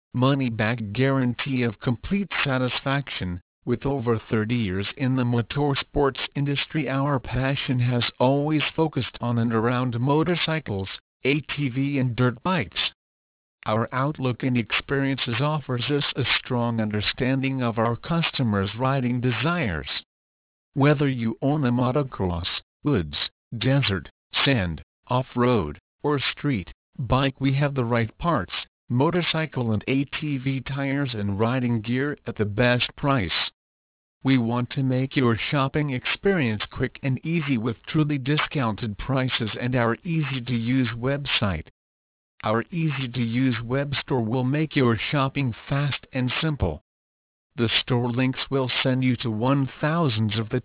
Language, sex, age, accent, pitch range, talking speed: English, male, 50-69, American, 115-140 Hz, 125 wpm